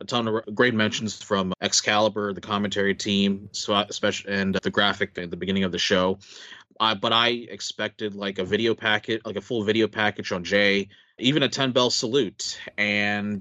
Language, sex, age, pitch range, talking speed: English, male, 30-49, 100-120 Hz, 190 wpm